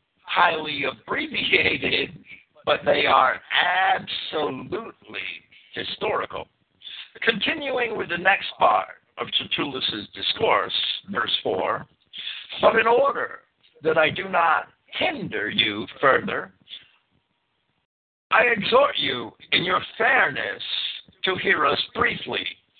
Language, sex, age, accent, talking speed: English, male, 60-79, American, 95 wpm